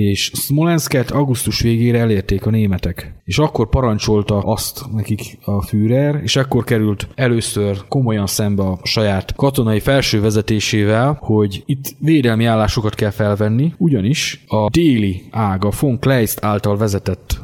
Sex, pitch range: male, 100-120 Hz